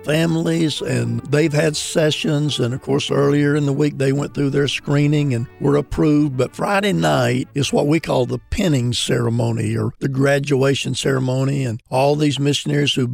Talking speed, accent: 180 wpm, American